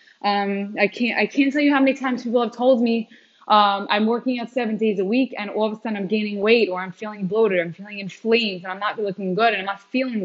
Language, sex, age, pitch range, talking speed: English, female, 10-29, 200-250 Hz, 270 wpm